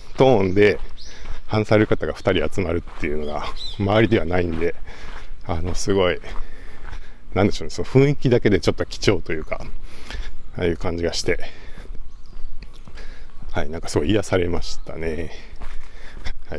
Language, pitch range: Japanese, 80-110 Hz